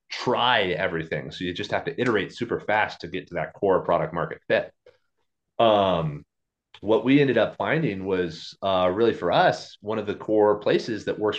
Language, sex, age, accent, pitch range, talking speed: English, male, 30-49, American, 90-110 Hz, 190 wpm